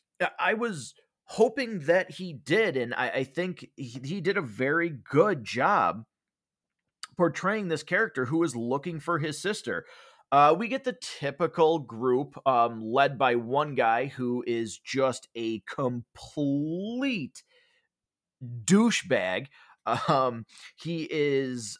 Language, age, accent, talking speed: English, 30-49, American, 125 wpm